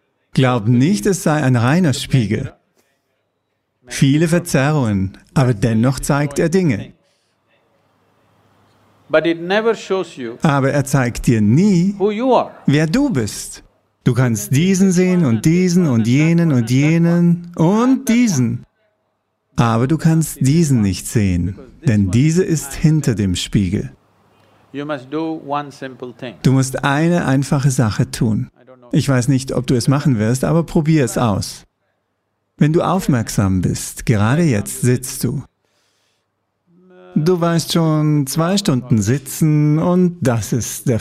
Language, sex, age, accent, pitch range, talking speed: English, male, 50-69, German, 115-165 Hz, 120 wpm